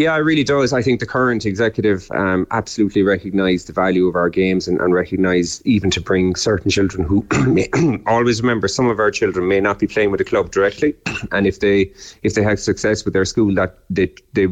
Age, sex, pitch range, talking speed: 30-49, male, 85-100 Hz, 220 wpm